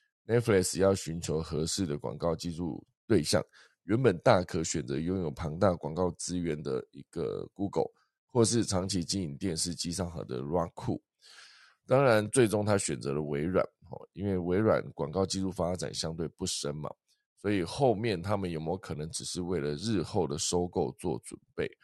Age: 20-39